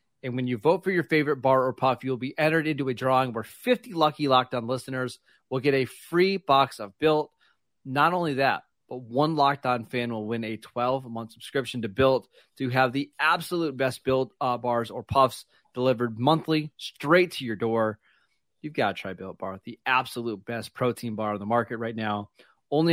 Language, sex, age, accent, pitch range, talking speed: English, male, 30-49, American, 115-135 Hz, 200 wpm